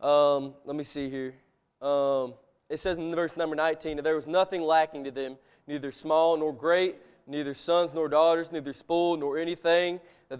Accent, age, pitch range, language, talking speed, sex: American, 20-39, 155-185 Hz, English, 185 wpm, male